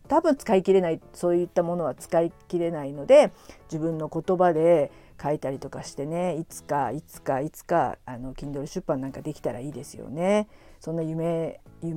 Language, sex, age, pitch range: Japanese, female, 50-69, 155-200 Hz